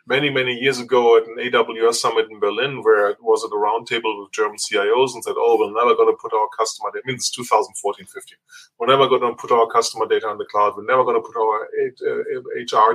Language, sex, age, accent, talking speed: English, male, 20-39, German, 245 wpm